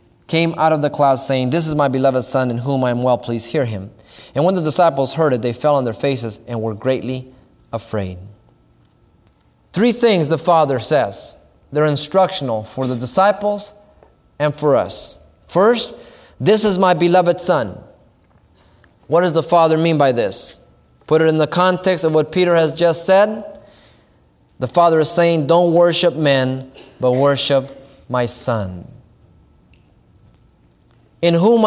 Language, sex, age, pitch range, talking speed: English, male, 20-39, 115-165 Hz, 160 wpm